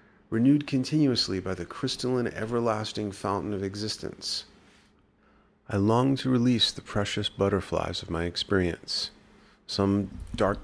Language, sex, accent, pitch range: English, male, American, 95-120 Hz